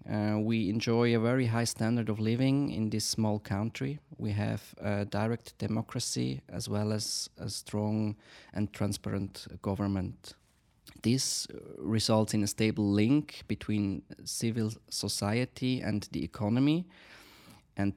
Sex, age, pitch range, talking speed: male, 20-39, 95-115 Hz, 135 wpm